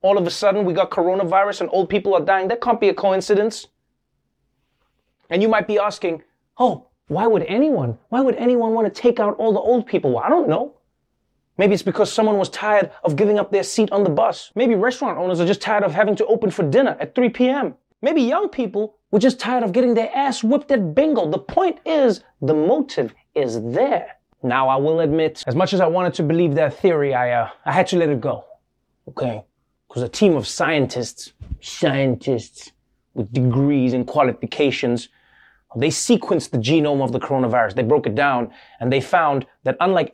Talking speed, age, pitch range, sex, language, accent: 205 wpm, 30-49, 145-225 Hz, male, English, American